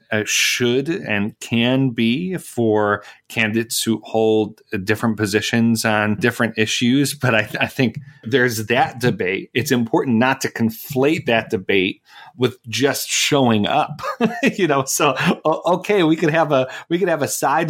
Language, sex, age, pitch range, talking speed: English, male, 30-49, 115-135 Hz, 150 wpm